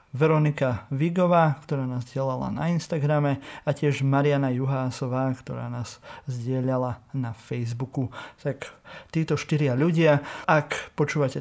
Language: Slovak